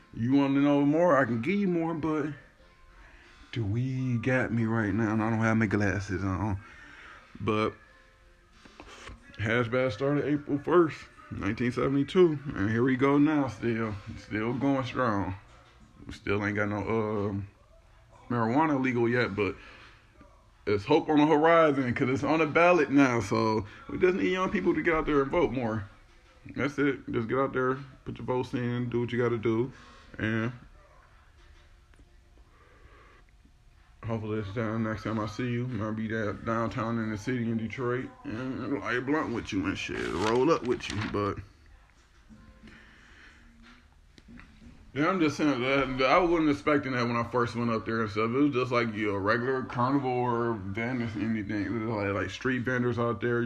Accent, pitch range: American, 105-135 Hz